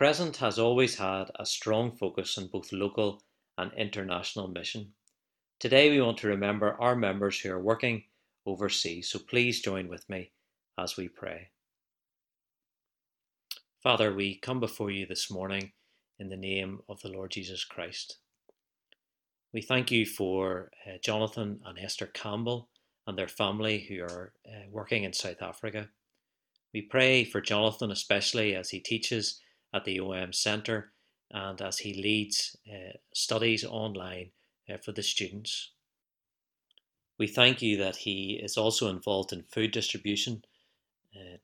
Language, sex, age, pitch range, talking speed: English, male, 40-59, 95-110 Hz, 145 wpm